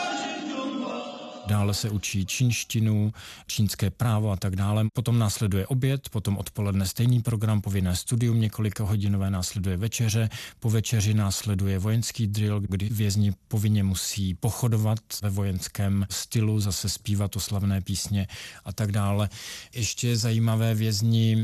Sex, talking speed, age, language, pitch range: male, 130 wpm, 40-59, Czech, 100-115 Hz